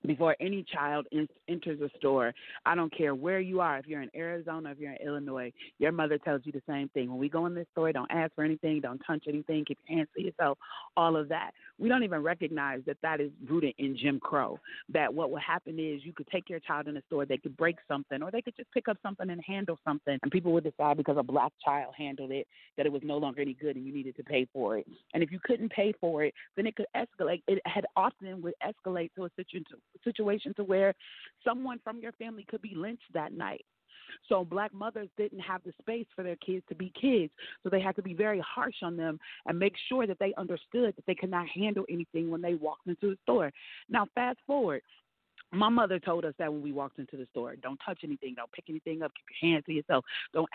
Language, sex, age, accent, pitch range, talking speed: English, female, 30-49, American, 150-195 Hz, 250 wpm